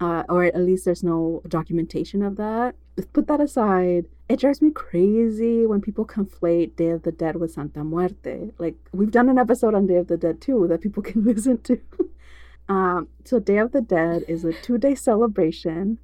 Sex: female